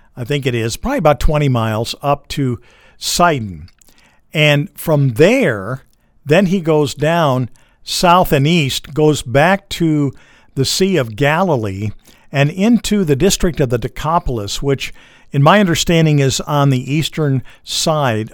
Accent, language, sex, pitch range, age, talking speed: American, English, male, 125-160 Hz, 50-69, 145 wpm